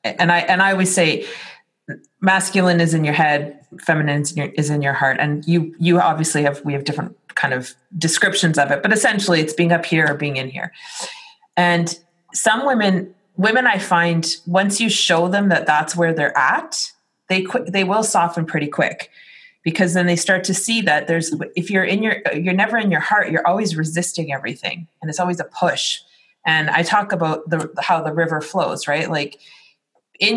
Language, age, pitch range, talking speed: English, 30-49, 160-190 Hz, 200 wpm